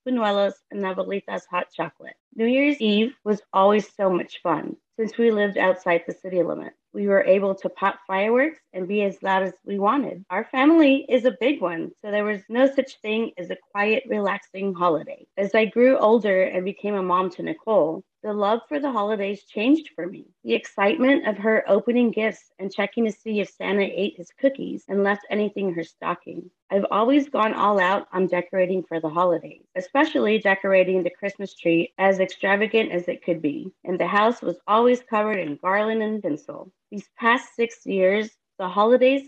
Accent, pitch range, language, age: American, 190-235 Hz, English, 30-49